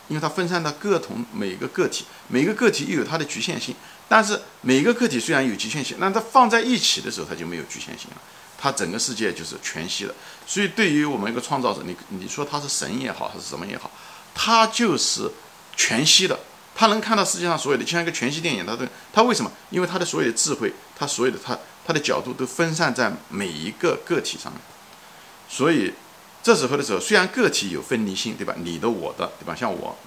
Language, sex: Chinese, male